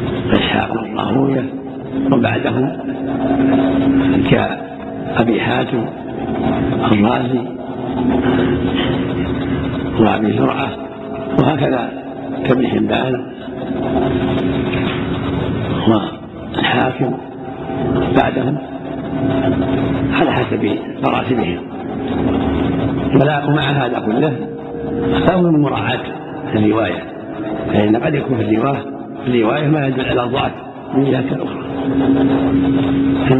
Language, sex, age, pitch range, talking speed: Arabic, male, 60-79, 125-135 Hz, 65 wpm